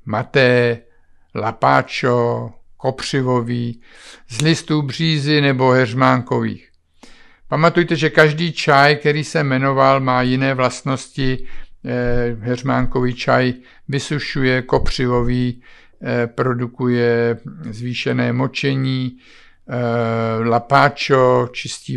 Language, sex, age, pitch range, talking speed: Czech, male, 50-69, 120-155 Hz, 75 wpm